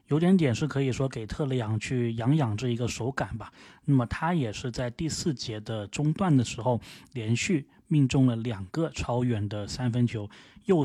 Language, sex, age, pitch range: Chinese, male, 20-39, 115-140 Hz